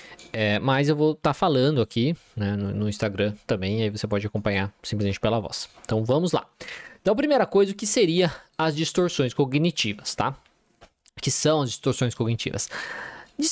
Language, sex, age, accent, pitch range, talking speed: Portuguese, male, 20-39, Brazilian, 115-170 Hz, 180 wpm